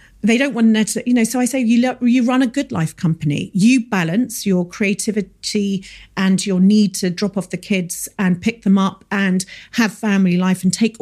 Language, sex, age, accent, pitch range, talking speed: English, female, 40-59, British, 185-230 Hz, 210 wpm